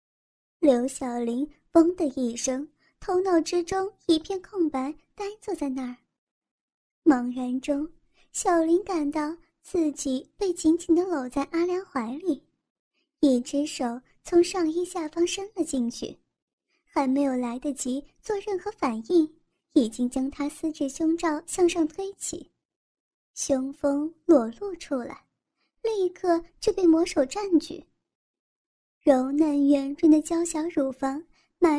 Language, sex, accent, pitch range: Chinese, male, native, 280-350 Hz